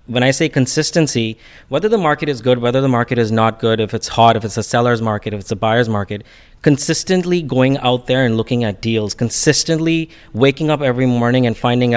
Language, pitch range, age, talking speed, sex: English, 110-135 Hz, 30-49, 215 wpm, male